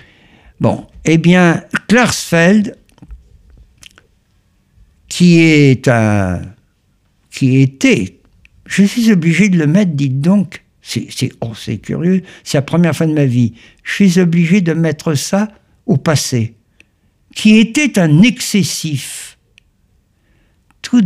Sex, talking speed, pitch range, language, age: male, 105 wpm, 125-165 Hz, French, 60-79